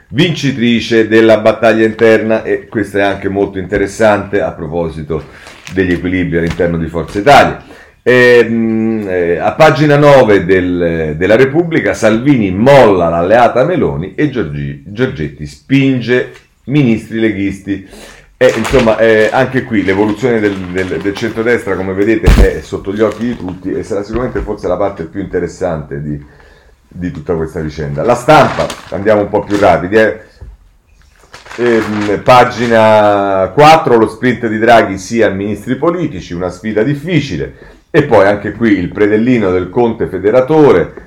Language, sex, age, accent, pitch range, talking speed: Italian, male, 40-59, native, 90-115 Hz, 140 wpm